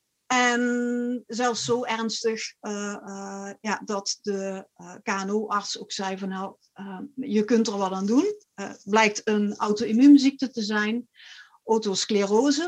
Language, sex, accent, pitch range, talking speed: Dutch, female, Dutch, 200-240 Hz, 135 wpm